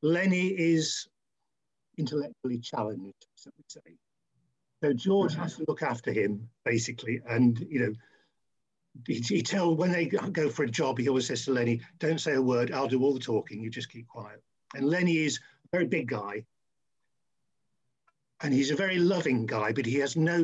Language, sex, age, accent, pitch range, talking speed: English, male, 50-69, British, 120-160 Hz, 185 wpm